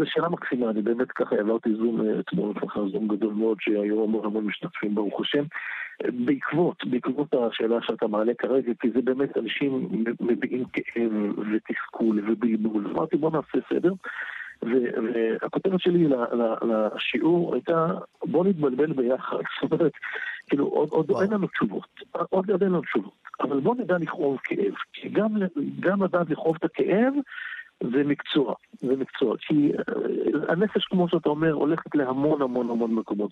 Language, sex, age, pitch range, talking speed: Hebrew, male, 50-69, 115-165 Hz, 140 wpm